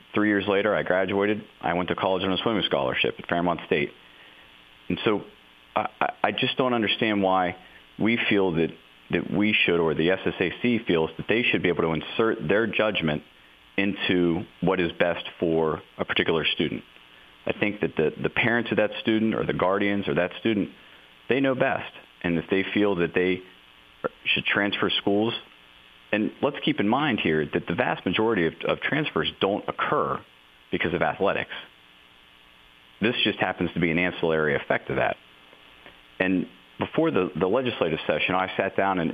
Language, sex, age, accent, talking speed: English, male, 40-59, American, 180 wpm